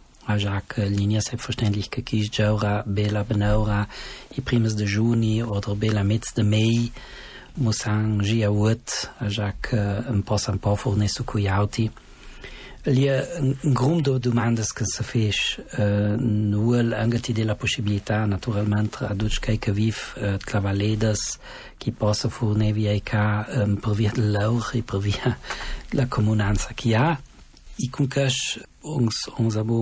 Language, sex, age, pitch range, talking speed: Italian, male, 40-59, 105-120 Hz, 135 wpm